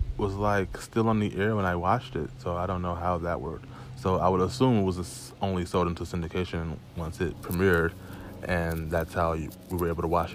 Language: English